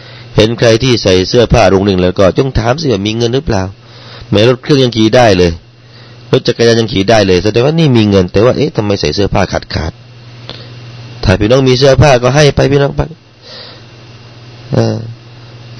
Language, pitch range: Thai, 110-125 Hz